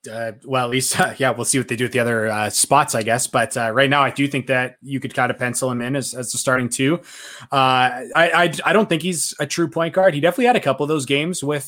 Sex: male